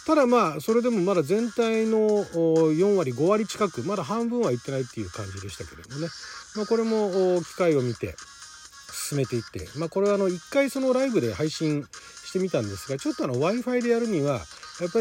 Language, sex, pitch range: Japanese, male, 120-195 Hz